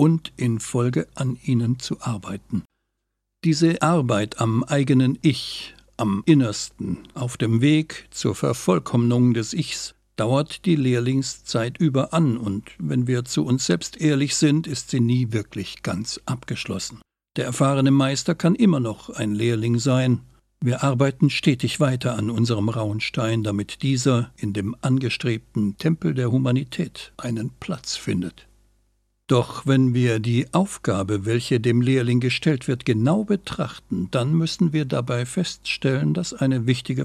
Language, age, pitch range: German, 60-79, 115-150 Hz